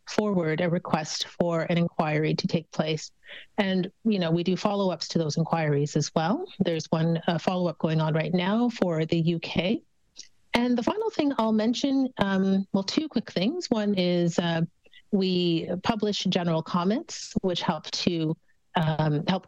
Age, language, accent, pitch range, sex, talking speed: 40-59, English, American, 170-215 Hz, female, 165 wpm